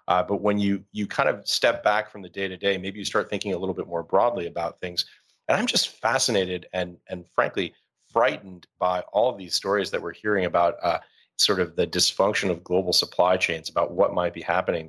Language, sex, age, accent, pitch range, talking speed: English, male, 30-49, American, 90-100 Hz, 225 wpm